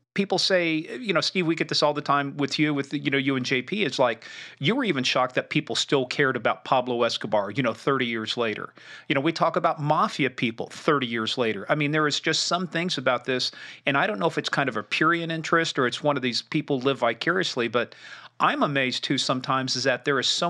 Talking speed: 250 wpm